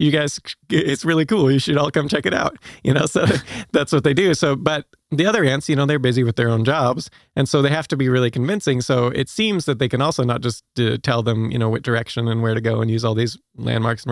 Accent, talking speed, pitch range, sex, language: American, 275 wpm, 115-135 Hz, male, English